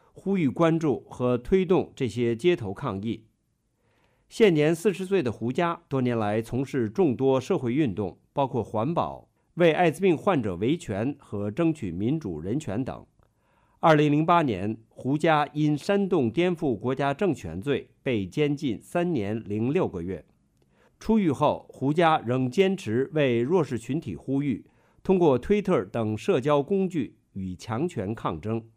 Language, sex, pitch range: English, male, 115-170 Hz